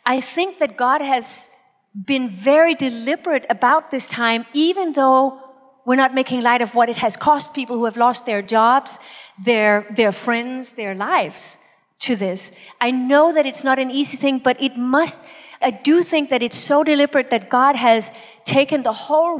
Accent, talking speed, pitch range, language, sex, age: American, 185 wpm, 235-295 Hz, English, female, 40-59